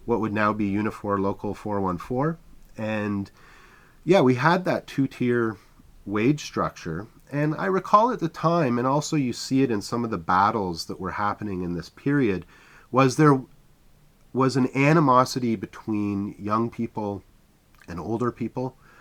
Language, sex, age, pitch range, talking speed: English, male, 30-49, 95-125 Hz, 150 wpm